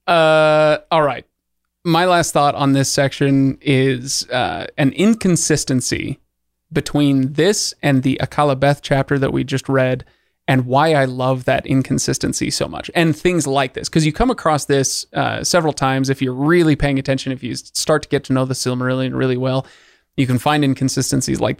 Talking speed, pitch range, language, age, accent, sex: 180 wpm, 130-160 Hz, English, 30-49, American, male